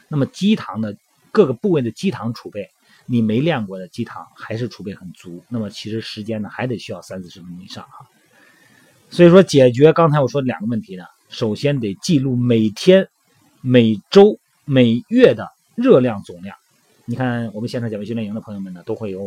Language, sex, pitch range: Chinese, male, 110-155 Hz